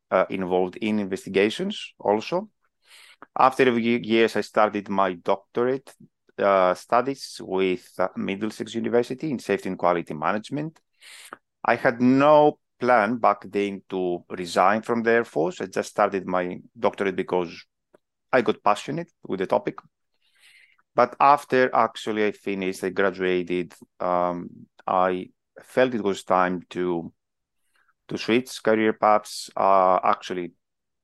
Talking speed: 130 wpm